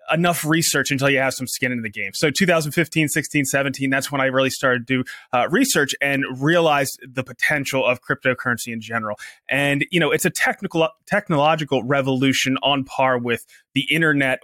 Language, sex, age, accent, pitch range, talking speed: English, male, 20-39, American, 130-160 Hz, 180 wpm